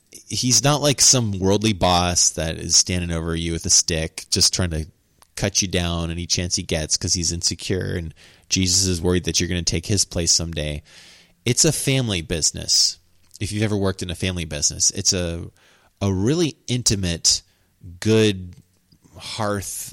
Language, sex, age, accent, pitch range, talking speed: English, male, 30-49, American, 85-110 Hz, 175 wpm